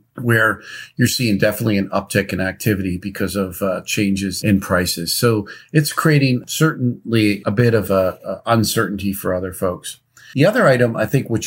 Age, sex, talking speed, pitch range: 50-69, male, 160 wpm, 100-120 Hz